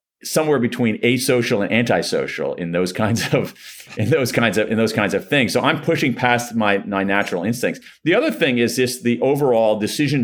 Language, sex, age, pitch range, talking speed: English, male, 40-59, 95-115 Hz, 200 wpm